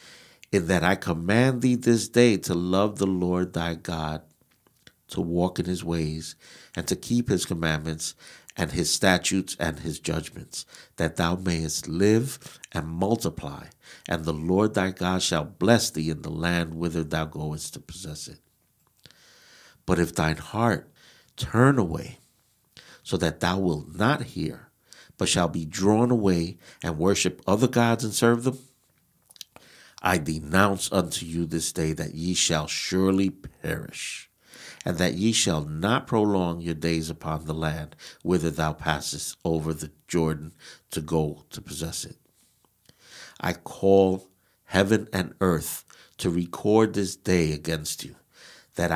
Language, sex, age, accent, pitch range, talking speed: English, male, 60-79, American, 80-105 Hz, 150 wpm